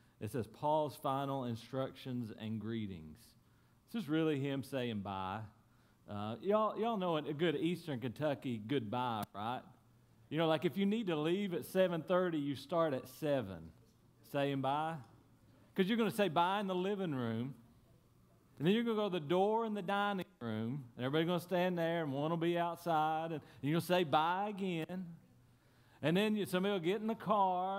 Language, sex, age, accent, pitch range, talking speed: English, male, 40-59, American, 130-185 Hz, 190 wpm